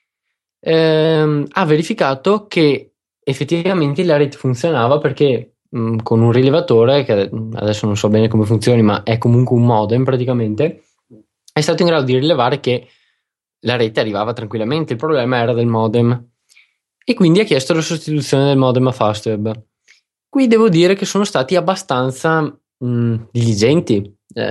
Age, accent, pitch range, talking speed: 20-39, native, 115-145 Hz, 145 wpm